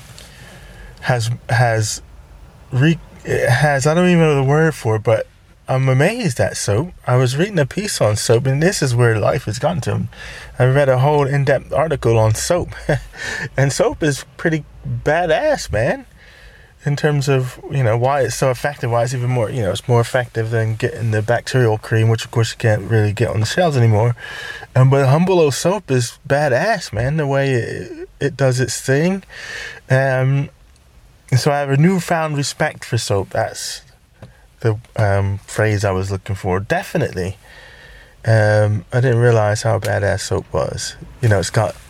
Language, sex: English, male